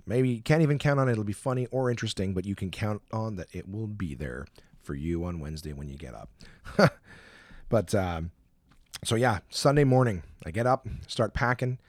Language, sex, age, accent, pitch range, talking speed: English, male, 40-59, American, 85-125 Hz, 205 wpm